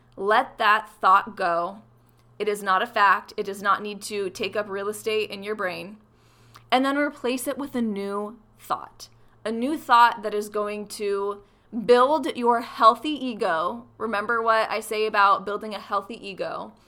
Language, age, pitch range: English, 20-39, 200-245 Hz